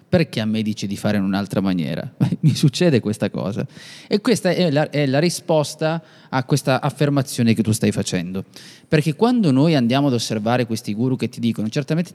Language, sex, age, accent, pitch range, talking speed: Italian, male, 20-39, native, 115-155 Hz, 195 wpm